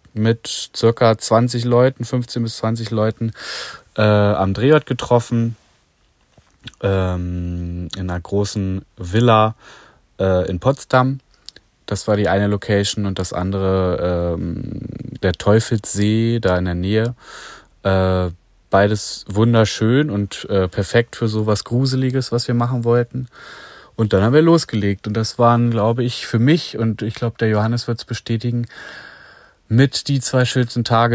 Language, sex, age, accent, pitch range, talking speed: German, male, 30-49, German, 95-120 Hz, 140 wpm